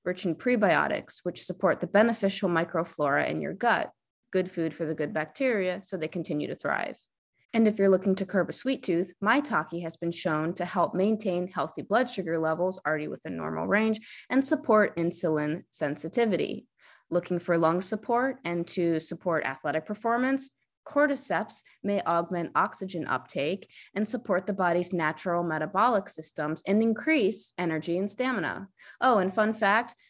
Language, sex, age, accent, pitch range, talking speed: English, female, 20-39, American, 165-215 Hz, 160 wpm